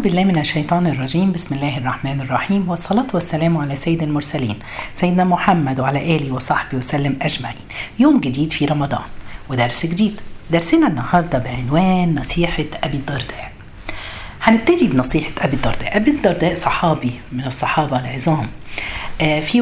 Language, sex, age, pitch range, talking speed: Arabic, female, 40-59, 140-180 Hz, 130 wpm